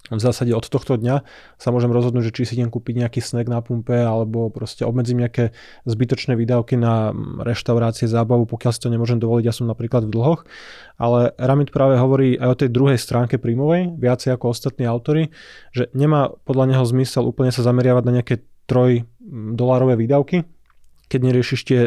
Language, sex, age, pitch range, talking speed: Slovak, male, 20-39, 115-125 Hz, 180 wpm